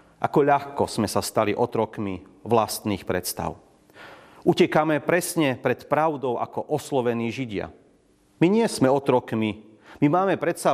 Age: 40-59